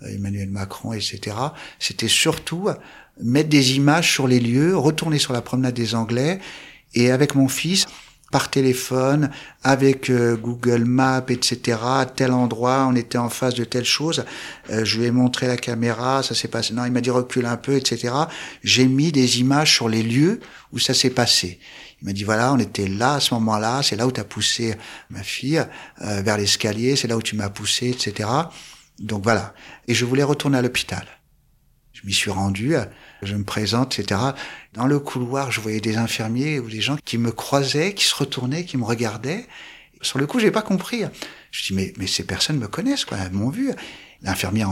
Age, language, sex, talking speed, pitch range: 60-79, French, male, 205 wpm, 110-135 Hz